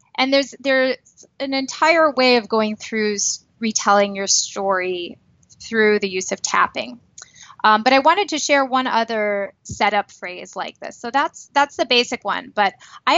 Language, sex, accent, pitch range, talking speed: English, female, American, 210-260 Hz, 170 wpm